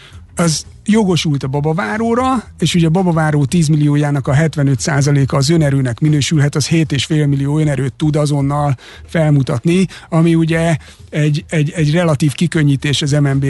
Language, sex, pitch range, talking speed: Hungarian, male, 145-185 Hz, 145 wpm